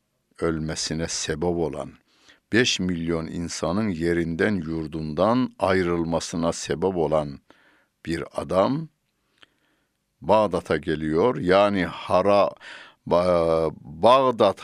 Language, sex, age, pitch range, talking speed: Turkish, male, 60-79, 80-95 Hz, 70 wpm